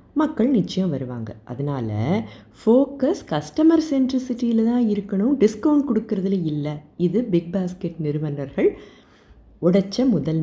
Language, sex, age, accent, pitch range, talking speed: Tamil, female, 30-49, native, 160-230 Hz, 105 wpm